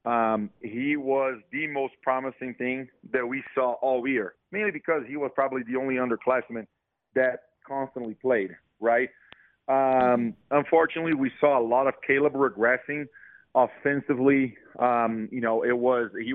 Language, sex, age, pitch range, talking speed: English, male, 40-59, 115-135 Hz, 145 wpm